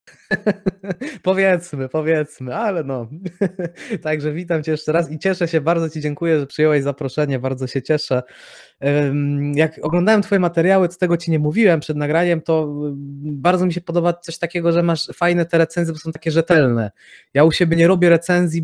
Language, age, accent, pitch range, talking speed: Polish, 20-39, native, 145-170 Hz, 175 wpm